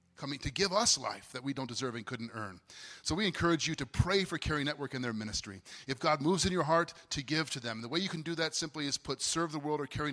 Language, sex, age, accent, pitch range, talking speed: English, male, 40-59, American, 115-150 Hz, 285 wpm